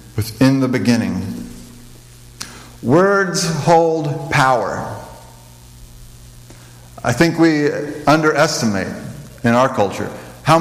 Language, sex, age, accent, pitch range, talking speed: English, male, 50-69, American, 115-155 Hz, 80 wpm